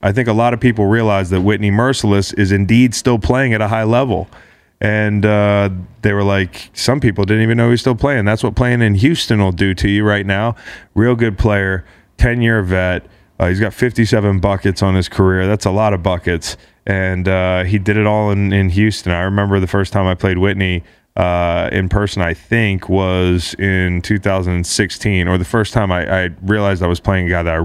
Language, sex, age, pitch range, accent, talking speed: English, male, 20-39, 90-110 Hz, American, 215 wpm